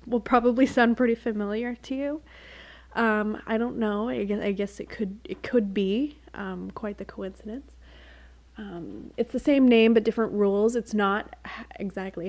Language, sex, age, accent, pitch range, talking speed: English, female, 20-39, American, 185-240 Hz, 170 wpm